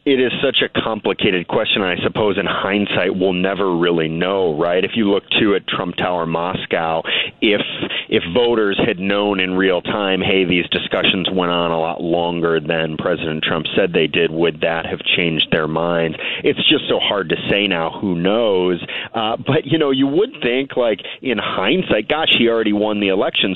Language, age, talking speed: English, 40-59, 195 wpm